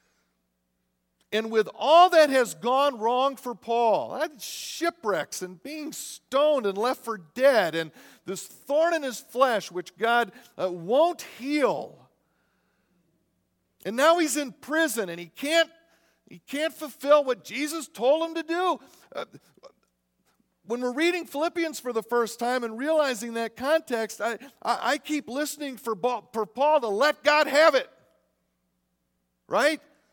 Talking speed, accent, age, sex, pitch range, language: 140 wpm, American, 50-69, male, 185-295 Hz, English